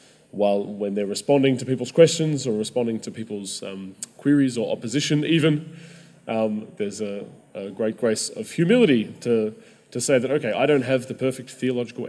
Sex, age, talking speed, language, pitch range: male, 20-39, 175 wpm, English, 110-130 Hz